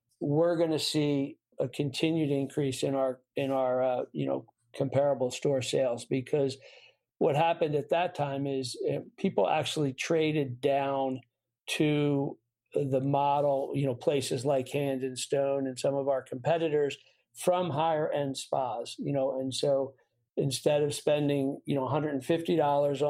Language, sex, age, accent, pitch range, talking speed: English, male, 50-69, American, 130-145 Hz, 150 wpm